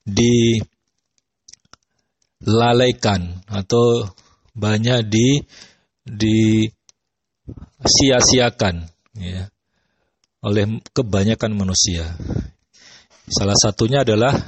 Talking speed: 55 wpm